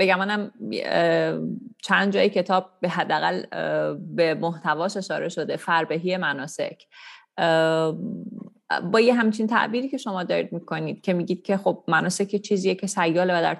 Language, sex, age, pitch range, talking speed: Persian, female, 30-49, 160-200 Hz, 130 wpm